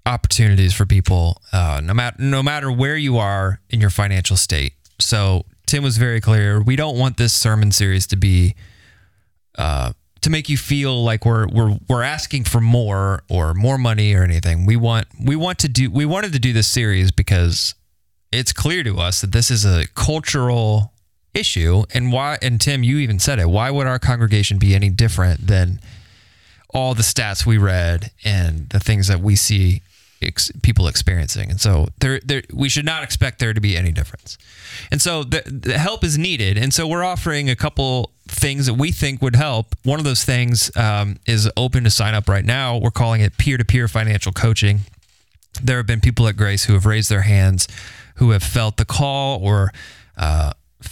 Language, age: English, 30-49